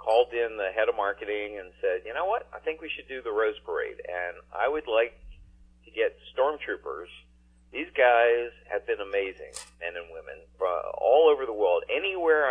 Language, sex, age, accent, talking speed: English, male, 40-59, American, 185 wpm